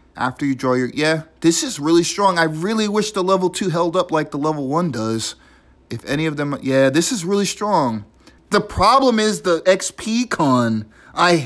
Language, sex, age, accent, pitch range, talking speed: English, male, 30-49, American, 135-205 Hz, 200 wpm